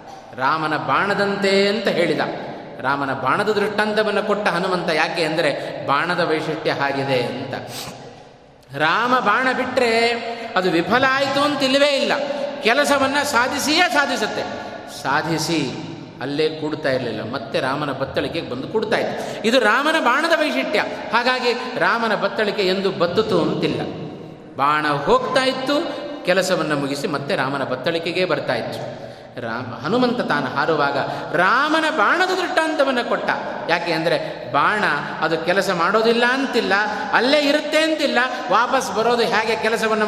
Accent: native